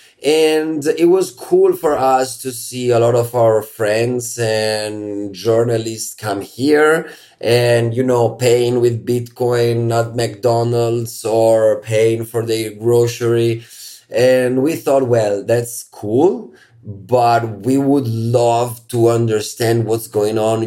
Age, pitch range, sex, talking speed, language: 30-49, 110-135 Hz, male, 130 wpm, English